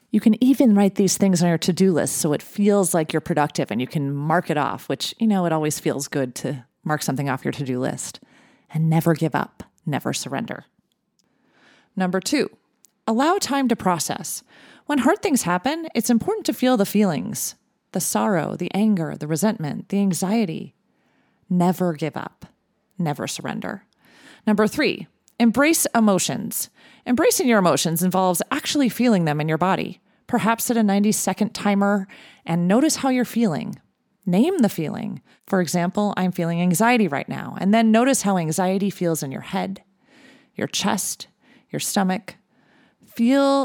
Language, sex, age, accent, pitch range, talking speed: English, female, 30-49, American, 175-235 Hz, 165 wpm